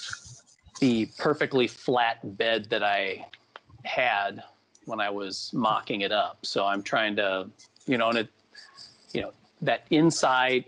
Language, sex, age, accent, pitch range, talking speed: English, male, 40-59, American, 105-130 Hz, 140 wpm